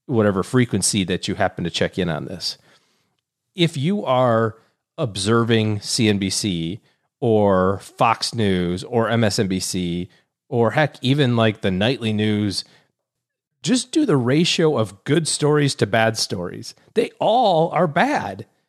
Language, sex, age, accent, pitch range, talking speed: English, male, 30-49, American, 110-160 Hz, 130 wpm